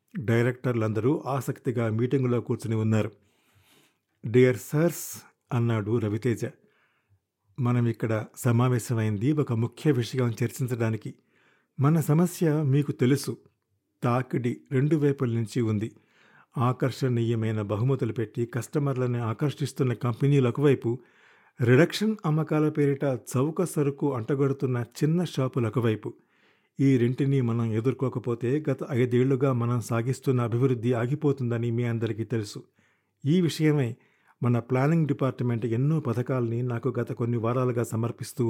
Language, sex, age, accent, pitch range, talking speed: Telugu, male, 50-69, native, 115-140 Hz, 100 wpm